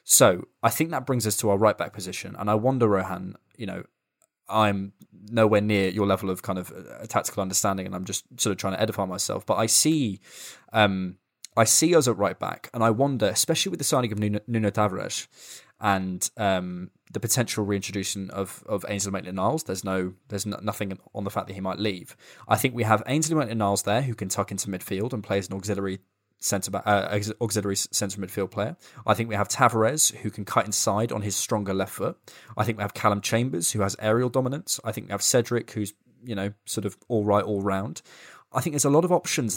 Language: English